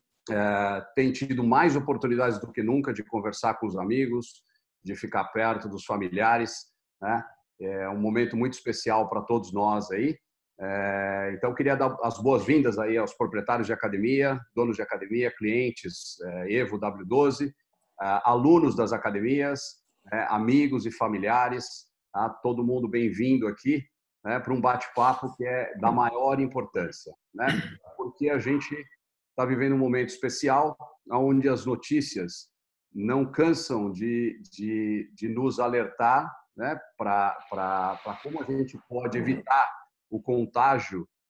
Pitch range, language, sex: 110-130 Hz, Portuguese, male